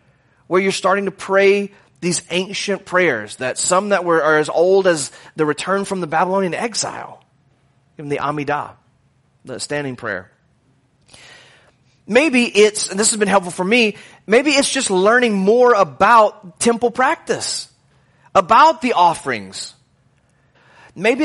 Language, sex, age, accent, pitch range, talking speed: English, male, 30-49, American, 140-195 Hz, 140 wpm